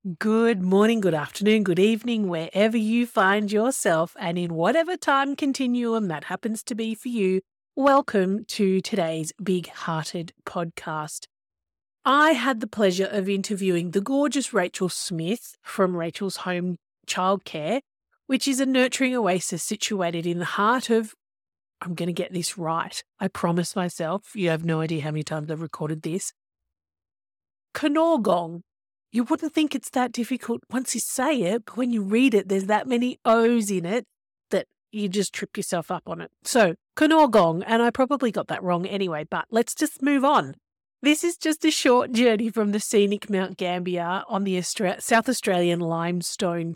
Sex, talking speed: female, 165 wpm